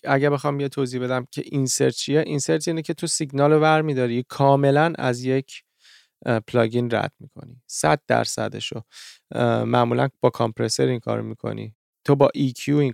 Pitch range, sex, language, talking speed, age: 120-145 Hz, male, Persian, 160 wpm, 30-49